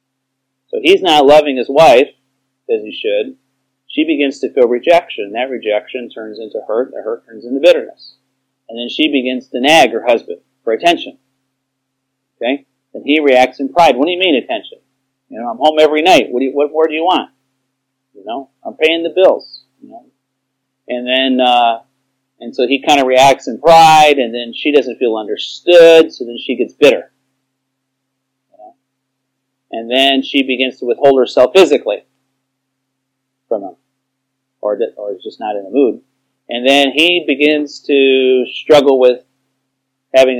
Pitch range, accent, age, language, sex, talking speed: 130-145 Hz, American, 40-59, English, male, 170 wpm